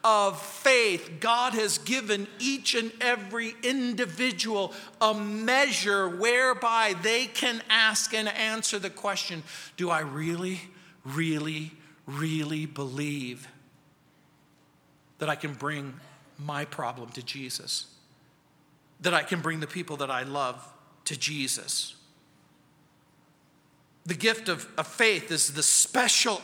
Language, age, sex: English, 50-69, male